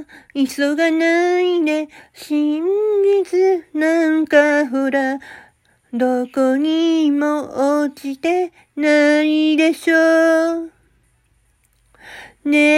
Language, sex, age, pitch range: Japanese, female, 40-59, 300-390 Hz